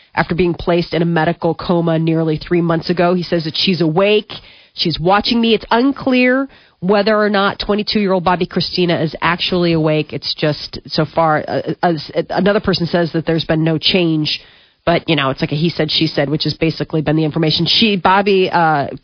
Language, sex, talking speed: English, female, 195 wpm